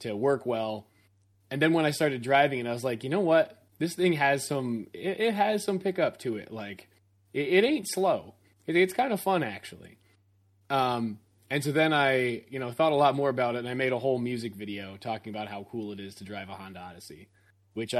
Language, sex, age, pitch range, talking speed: English, male, 20-39, 105-150 Hz, 230 wpm